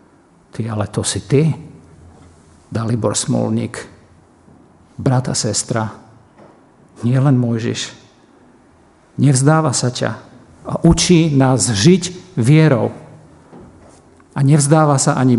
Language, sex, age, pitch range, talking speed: Slovak, male, 50-69, 120-145 Hz, 90 wpm